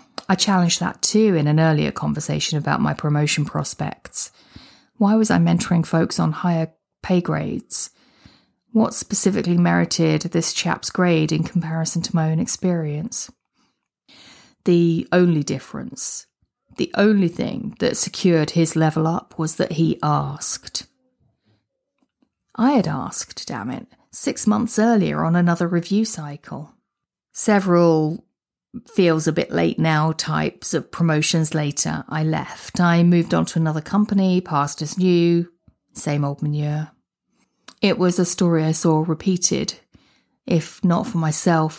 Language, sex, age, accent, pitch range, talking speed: English, female, 30-49, British, 155-185 Hz, 130 wpm